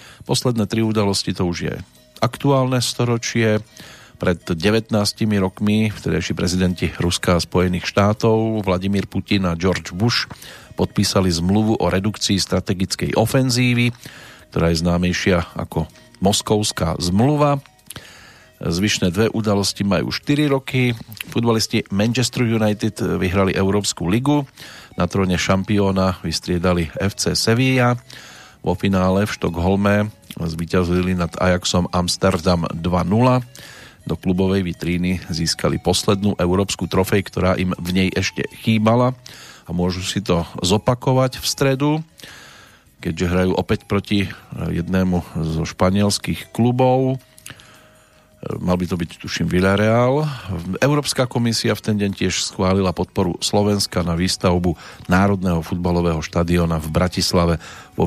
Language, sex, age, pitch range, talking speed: Slovak, male, 40-59, 90-115 Hz, 115 wpm